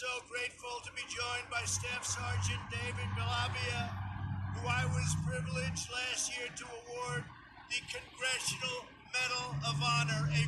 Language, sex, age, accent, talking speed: English, male, 50-69, American, 135 wpm